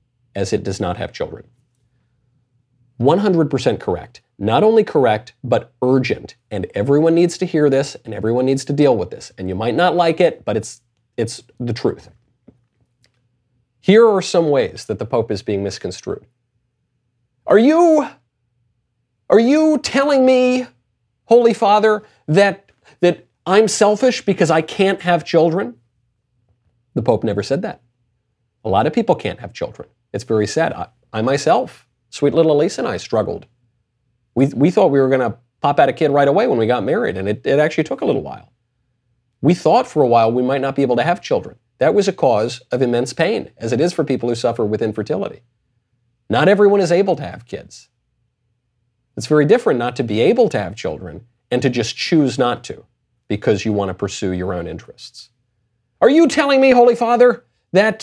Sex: male